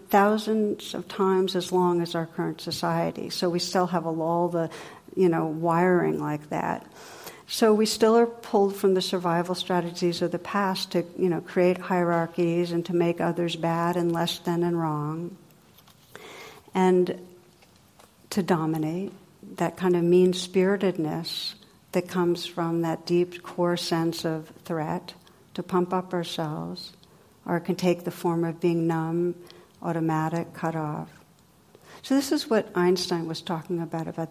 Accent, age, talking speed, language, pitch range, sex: American, 60-79, 150 wpm, English, 165-185 Hz, female